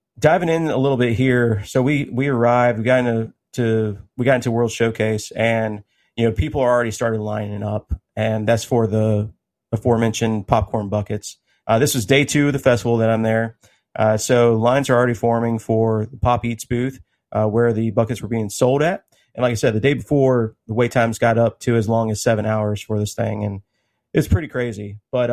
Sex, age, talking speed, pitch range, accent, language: male, 30-49, 215 wpm, 110-130 Hz, American, English